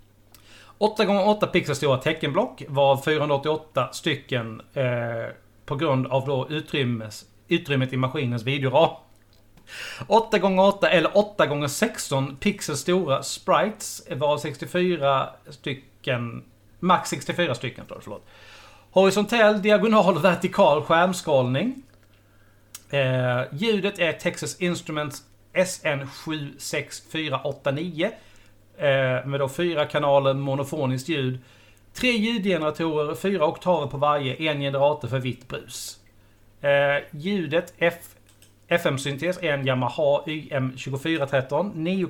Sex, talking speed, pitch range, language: male, 95 wpm, 130-165 Hz, Swedish